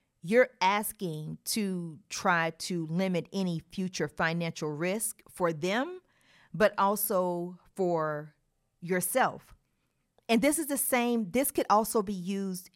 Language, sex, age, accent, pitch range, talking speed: English, female, 40-59, American, 175-215 Hz, 120 wpm